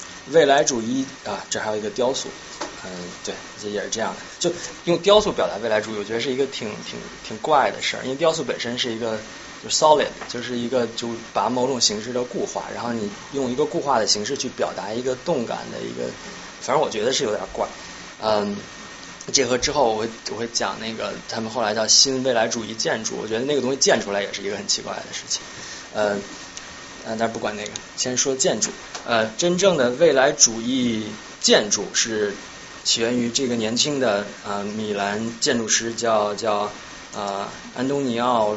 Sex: male